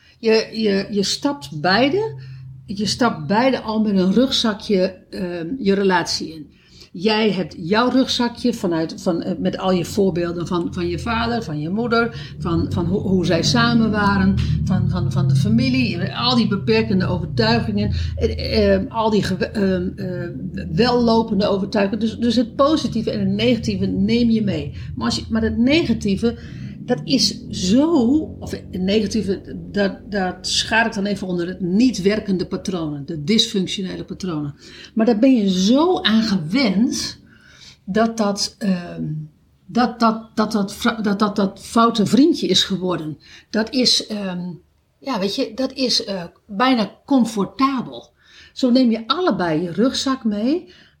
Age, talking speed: 50-69, 160 wpm